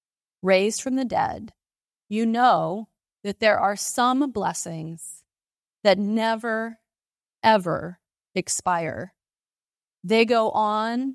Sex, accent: female, American